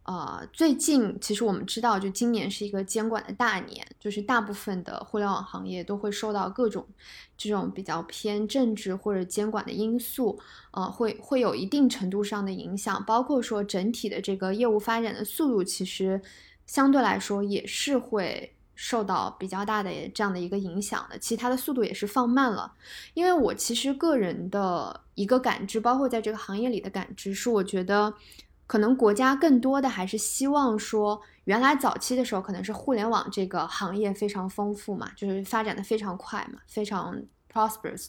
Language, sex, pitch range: Chinese, female, 200-250 Hz